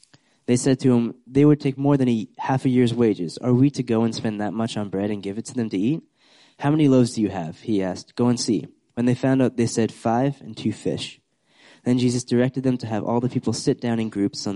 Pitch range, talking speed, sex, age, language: 105-125 Hz, 270 wpm, male, 20-39, English